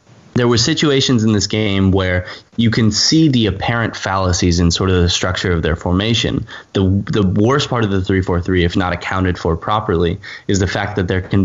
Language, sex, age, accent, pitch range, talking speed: English, male, 10-29, American, 90-105 Hz, 205 wpm